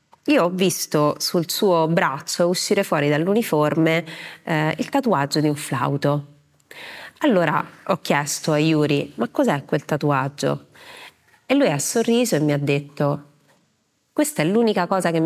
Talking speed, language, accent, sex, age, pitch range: 145 wpm, Italian, native, female, 30-49, 145-185 Hz